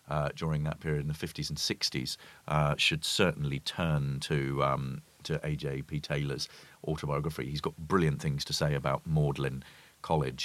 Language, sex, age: English, male, 40-59